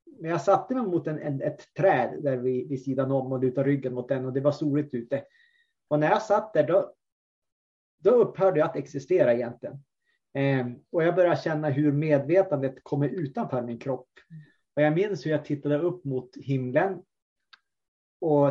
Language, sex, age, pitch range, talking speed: Swedish, male, 30-49, 135-165 Hz, 185 wpm